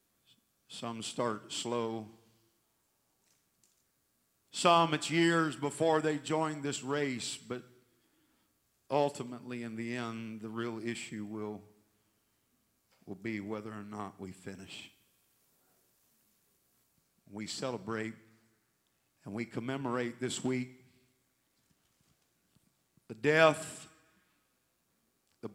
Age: 50-69